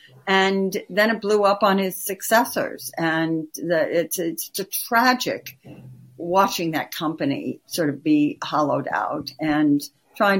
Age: 60-79